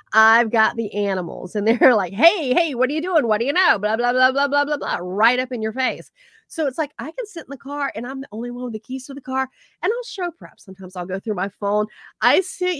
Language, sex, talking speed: English, female, 285 wpm